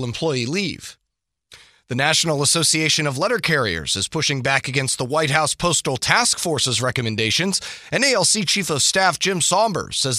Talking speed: 160 wpm